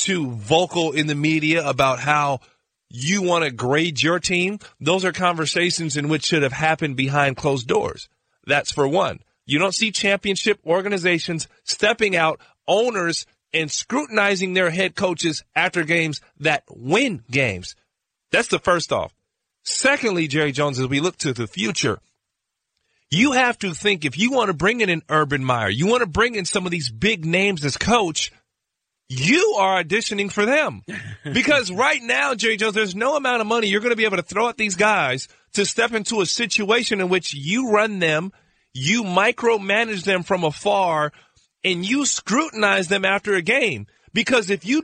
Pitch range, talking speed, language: 160-225 Hz, 180 wpm, English